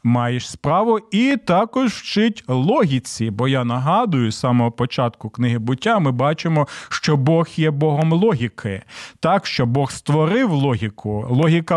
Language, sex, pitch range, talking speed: Ukrainian, male, 130-170 Hz, 140 wpm